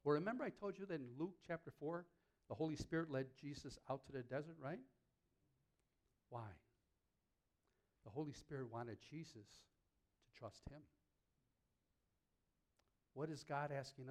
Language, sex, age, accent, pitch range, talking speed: English, male, 60-79, American, 110-145 Hz, 140 wpm